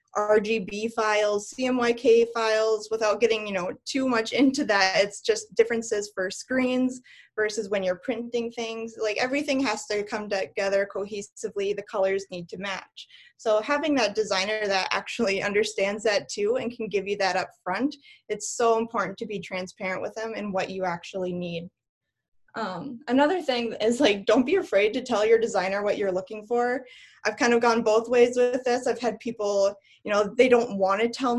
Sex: female